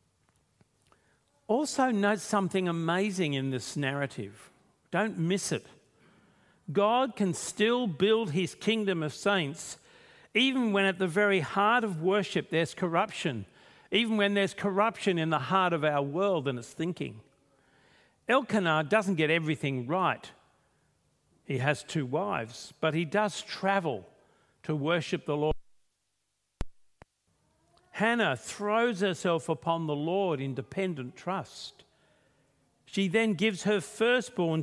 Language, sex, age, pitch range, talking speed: English, male, 50-69, 145-200 Hz, 125 wpm